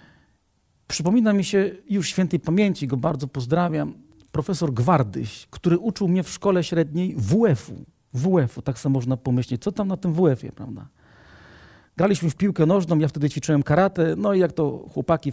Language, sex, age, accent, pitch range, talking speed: Polish, male, 40-59, native, 120-175 Hz, 165 wpm